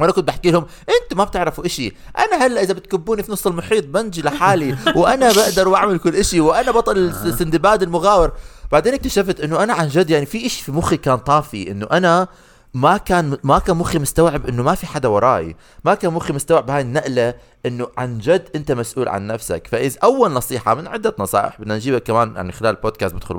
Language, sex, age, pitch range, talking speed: Arabic, male, 30-49, 135-190 Hz, 205 wpm